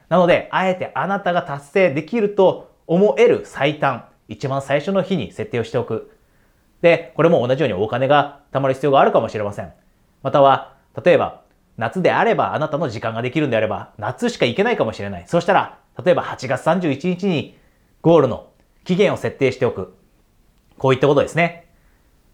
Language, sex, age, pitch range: Japanese, male, 30-49, 130-180 Hz